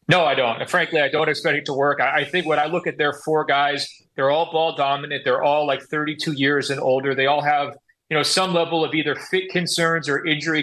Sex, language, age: male, English, 30-49